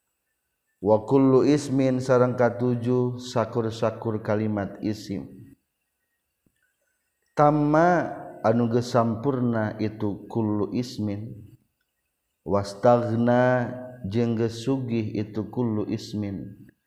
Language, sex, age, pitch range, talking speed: Indonesian, male, 50-69, 100-120 Hz, 65 wpm